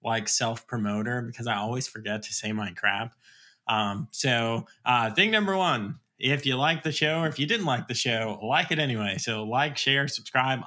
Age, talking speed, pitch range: 20-39, 195 wpm, 115-145 Hz